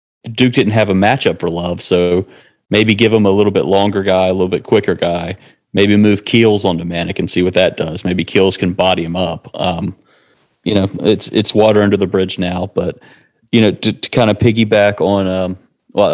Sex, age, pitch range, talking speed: male, 30-49, 90-105 Hz, 210 wpm